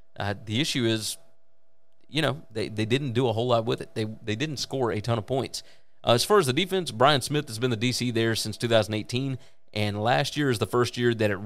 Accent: American